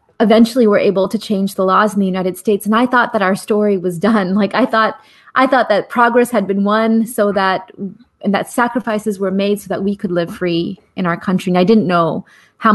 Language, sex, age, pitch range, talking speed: English, female, 30-49, 180-225 Hz, 240 wpm